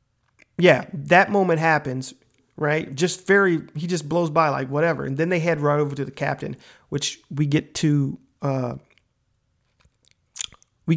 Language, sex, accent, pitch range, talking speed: English, male, American, 135-155 Hz, 155 wpm